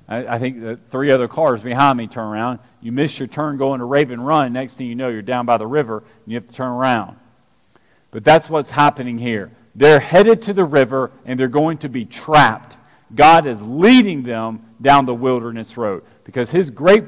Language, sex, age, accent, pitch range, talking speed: English, male, 40-59, American, 125-205 Hz, 210 wpm